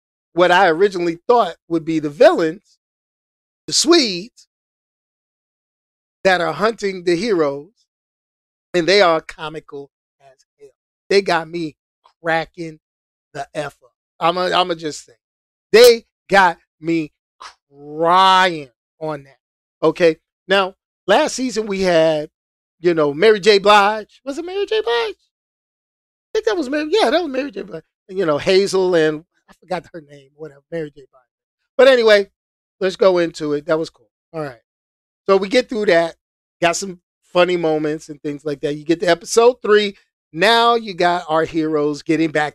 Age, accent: 40-59, American